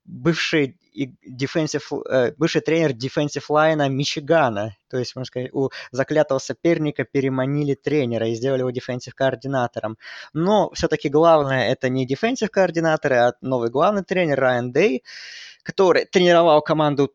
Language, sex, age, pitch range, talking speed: Russian, male, 20-39, 125-160 Hz, 115 wpm